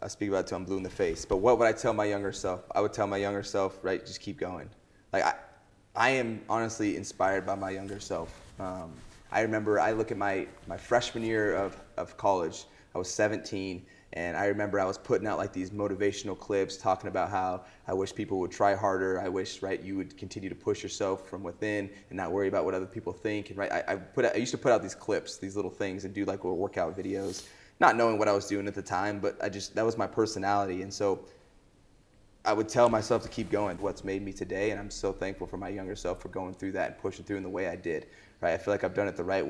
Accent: American